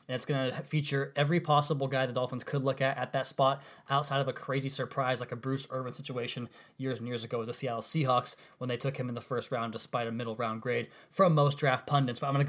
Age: 20-39